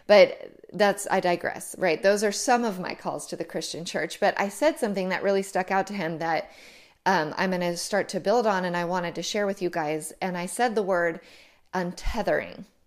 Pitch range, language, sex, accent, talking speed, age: 175-205 Hz, English, female, American, 220 wpm, 30-49